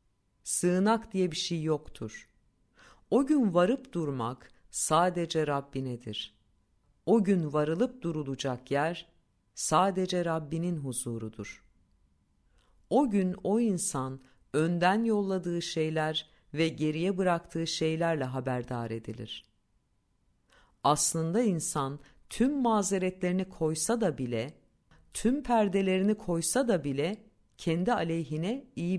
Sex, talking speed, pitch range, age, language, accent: female, 95 wpm, 130-190 Hz, 50-69, Turkish, native